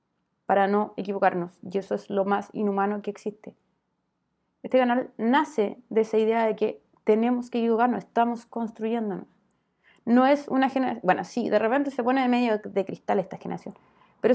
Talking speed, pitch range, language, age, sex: 170 wpm, 195-235 Hz, Spanish, 20-39, female